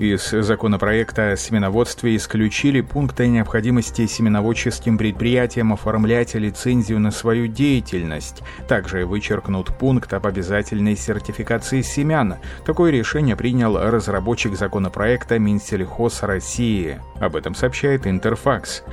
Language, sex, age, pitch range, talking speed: Russian, male, 30-49, 95-120 Hz, 100 wpm